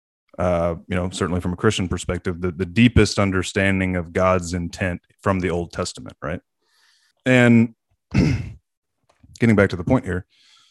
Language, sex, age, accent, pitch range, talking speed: English, male, 30-49, American, 90-110 Hz, 150 wpm